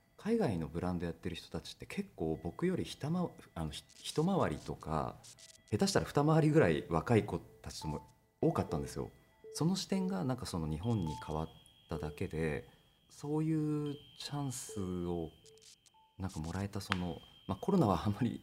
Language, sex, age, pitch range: Japanese, male, 40-59, 80-120 Hz